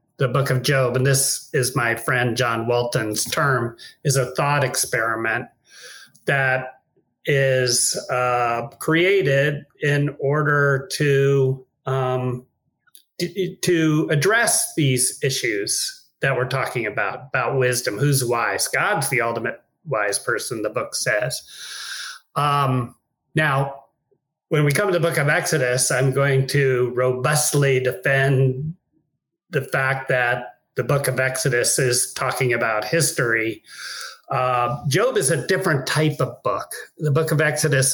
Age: 40-59